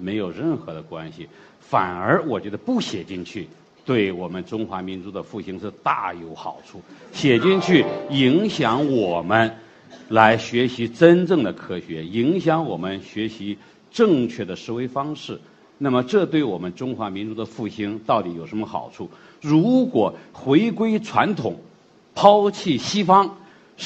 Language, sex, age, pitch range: Chinese, male, 50-69, 110-170 Hz